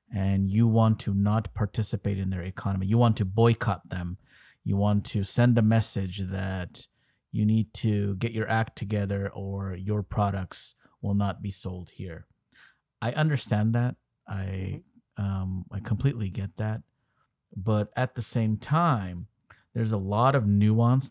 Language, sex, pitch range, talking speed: English, male, 100-120 Hz, 155 wpm